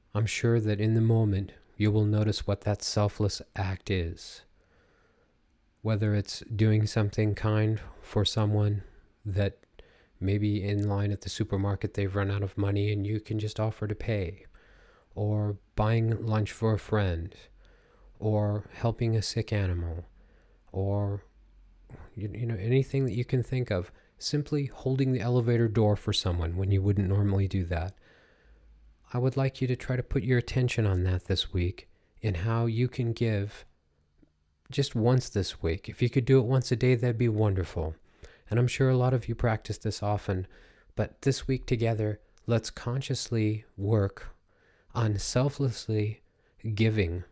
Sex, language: male, English